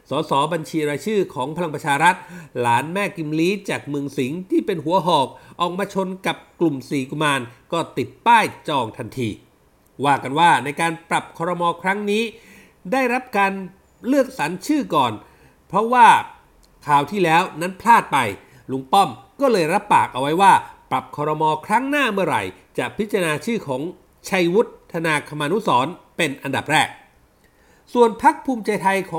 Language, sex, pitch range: Thai, male, 155-215 Hz